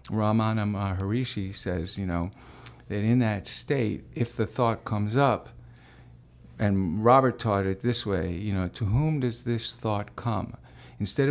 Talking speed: 155 wpm